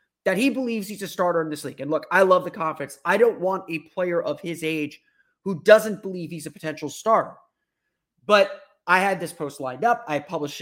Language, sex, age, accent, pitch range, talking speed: English, male, 30-49, American, 150-210 Hz, 220 wpm